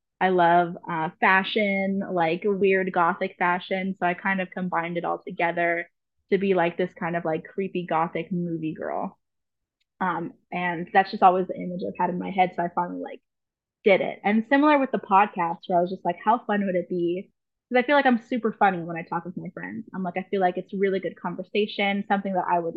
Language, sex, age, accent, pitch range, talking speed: English, female, 20-39, American, 175-200 Hz, 225 wpm